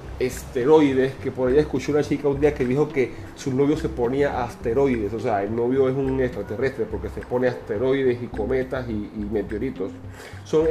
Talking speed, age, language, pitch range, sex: 190 wpm, 30-49, Spanish, 125-165 Hz, male